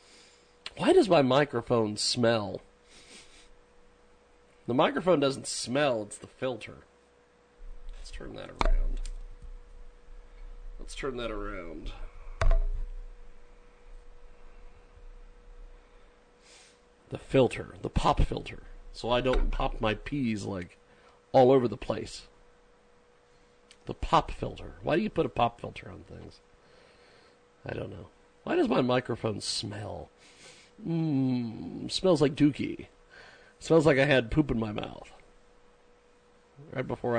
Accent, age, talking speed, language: American, 40-59, 115 wpm, English